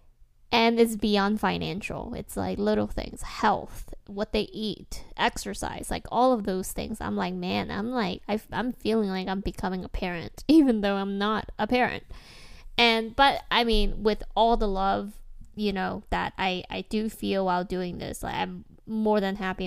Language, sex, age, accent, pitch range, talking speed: English, female, 10-29, American, 185-225 Hz, 185 wpm